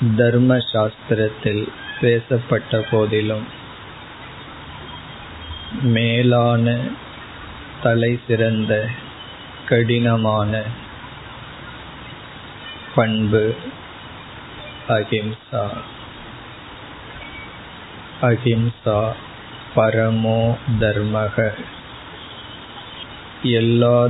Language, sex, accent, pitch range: Tamil, male, native, 110-120 Hz